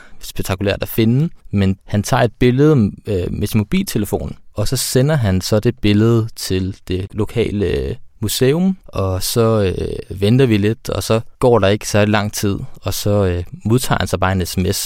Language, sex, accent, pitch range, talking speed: Danish, male, native, 95-105 Hz, 180 wpm